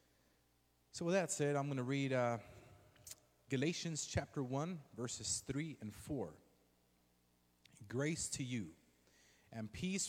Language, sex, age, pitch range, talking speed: English, male, 30-49, 80-125 Hz, 125 wpm